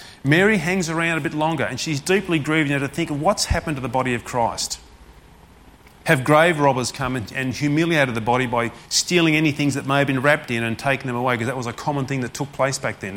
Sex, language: male, English